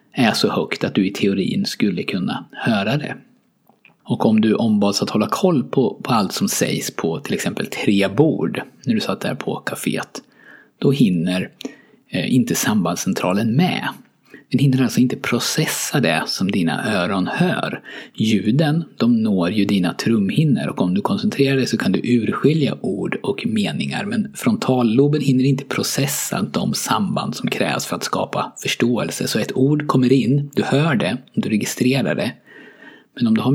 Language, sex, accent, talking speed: Swedish, male, native, 170 wpm